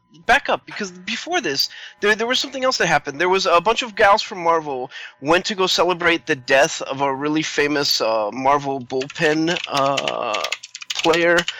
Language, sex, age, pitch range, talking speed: English, male, 20-39, 135-175 Hz, 180 wpm